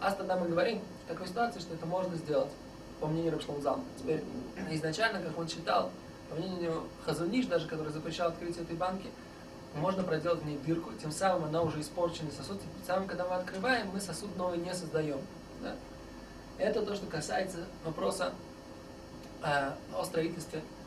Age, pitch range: 20-39, 155-180 Hz